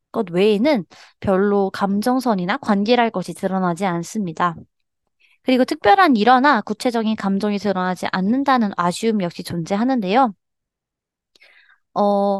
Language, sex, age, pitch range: Korean, female, 20-39, 185-255 Hz